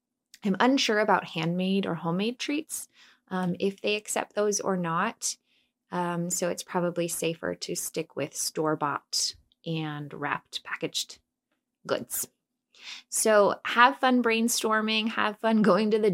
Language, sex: English, female